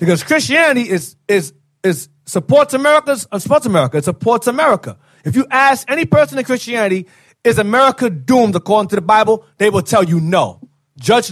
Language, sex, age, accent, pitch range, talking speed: English, male, 30-49, American, 165-245 Hz, 170 wpm